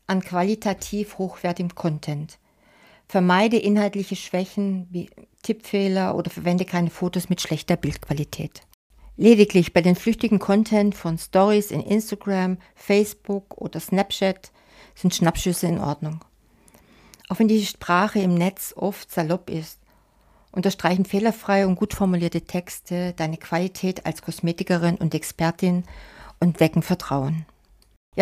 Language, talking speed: German, 120 wpm